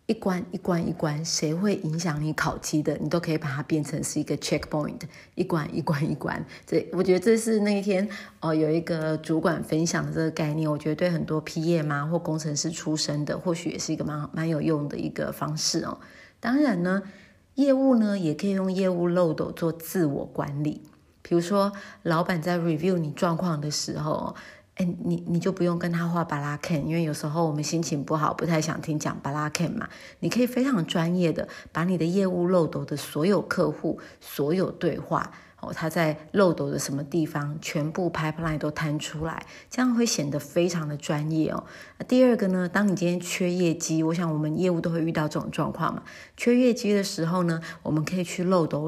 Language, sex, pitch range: Chinese, female, 155-180 Hz